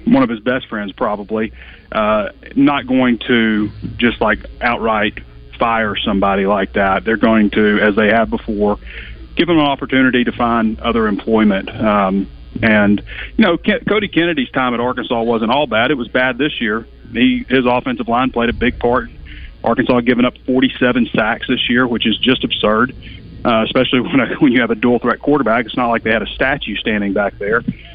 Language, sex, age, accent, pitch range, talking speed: English, male, 40-59, American, 105-130 Hz, 195 wpm